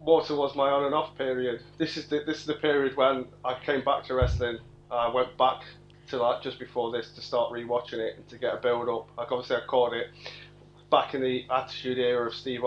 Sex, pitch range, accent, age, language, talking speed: male, 120-145 Hz, British, 30-49, English, 240 wpm